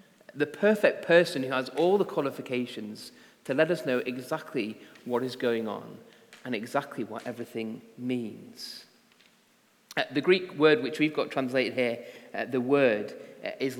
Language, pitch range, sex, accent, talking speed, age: English, 125-155 Hz, male, British, 145 wpm, 30-49